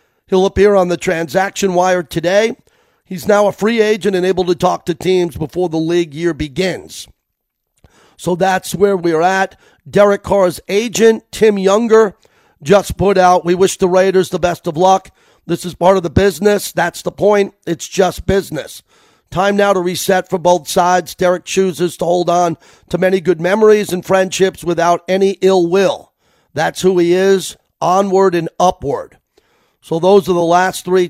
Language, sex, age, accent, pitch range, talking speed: English, male, 40-59, American, 160-190 Hz, 175 wpm